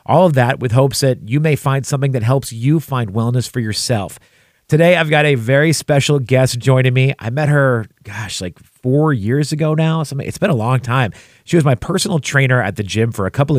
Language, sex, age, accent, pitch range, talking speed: English, male, 30-49, American, 115-145 Hz, 225 wpm